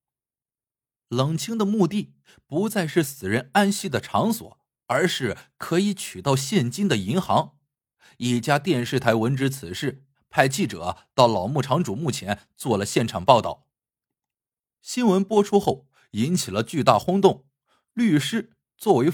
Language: Chinese